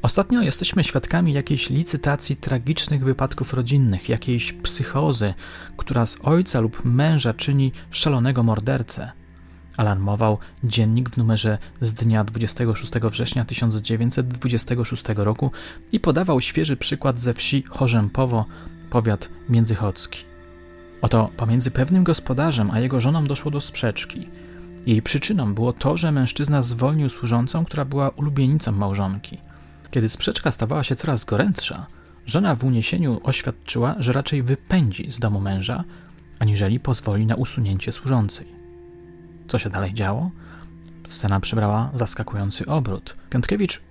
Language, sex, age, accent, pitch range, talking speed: Polish, male, 30-49, native, 100-140 Hz, 120 wpm